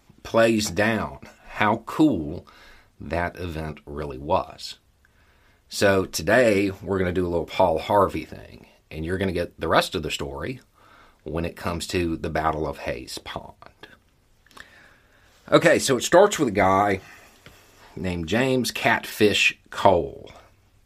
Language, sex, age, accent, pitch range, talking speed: English, male, 40-59, American, 80-100 Hz, 140 wpm